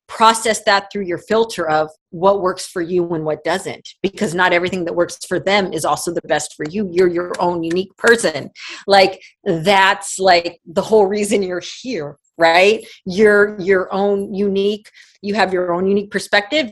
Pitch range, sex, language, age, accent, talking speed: 180-220 Hz, female, English, 30-49, American, 180 wpm